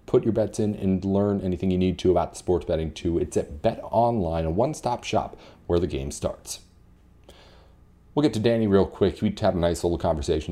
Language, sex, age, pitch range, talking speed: English, male, 40-59, 85-110 Hz, 215 wpm